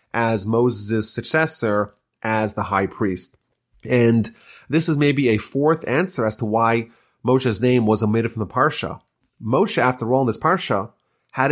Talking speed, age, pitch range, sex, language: 160 wpm, 30-49, 110-150 Hz, male, English